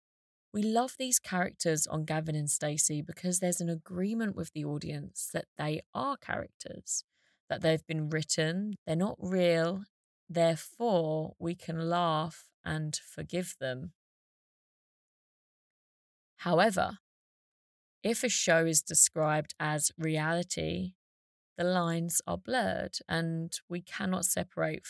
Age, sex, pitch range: 20-39, female, 155-190 Hz